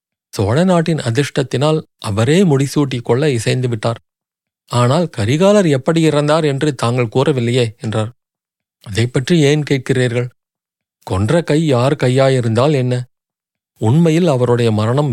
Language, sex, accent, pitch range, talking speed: Tamil, male, native, 120-150 Hz, 105 wpm